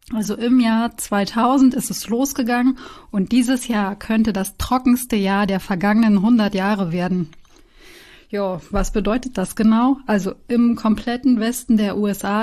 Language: German